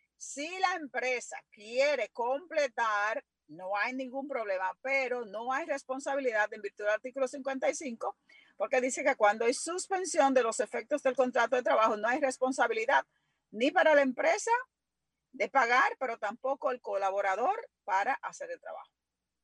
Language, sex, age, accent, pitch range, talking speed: Spanish, female, 40-59, American, 225-285 Hz, 150 wpm